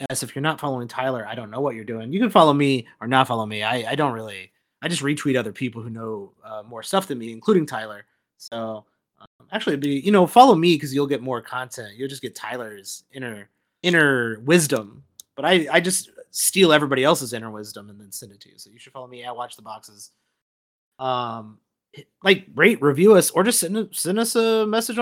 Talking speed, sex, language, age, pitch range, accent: 230 wpm, male, English, 30-49, 125-180 Hz, American